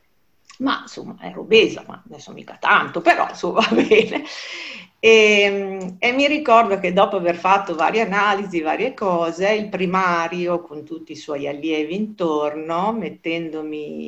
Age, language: 50-69, Italian